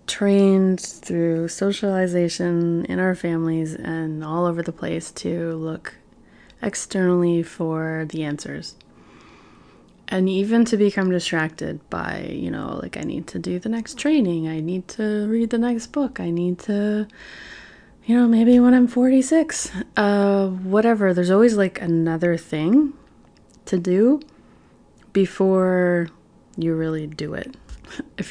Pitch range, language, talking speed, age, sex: 165-200 Hz, English, 135 wpm, 20-39, female